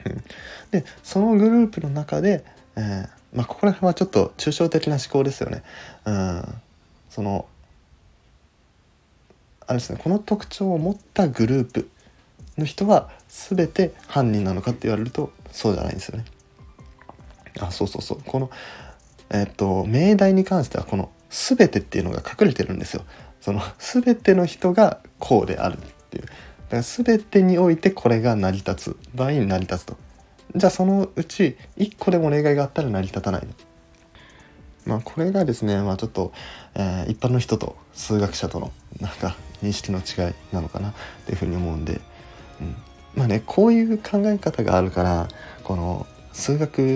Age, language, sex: 20-39, Japanese, male